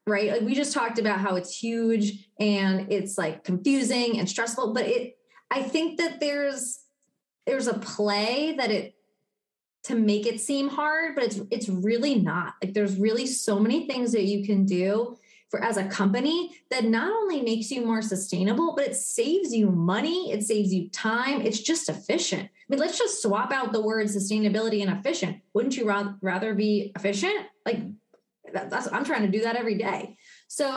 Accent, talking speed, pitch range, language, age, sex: American, 190 wpm, 200-245 Hz, English, 20-39, female